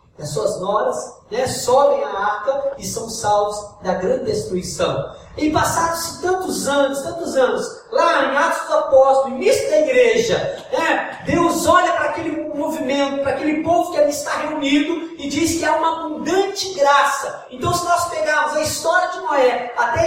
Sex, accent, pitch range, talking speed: male, Brazilian, 280-350 Hz, 170 wpm